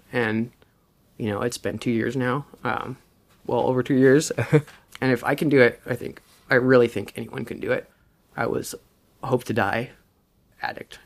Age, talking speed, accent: 20-39, 185 wpm, American